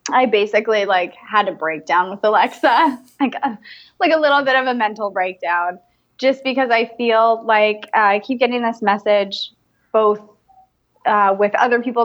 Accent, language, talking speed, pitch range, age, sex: American, English, 170 wpm, 200-235 Hz, 20-39, female